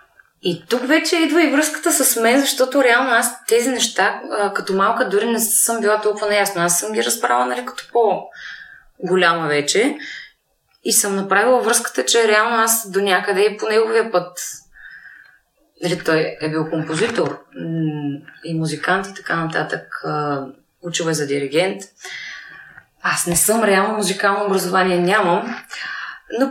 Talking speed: 140 wpm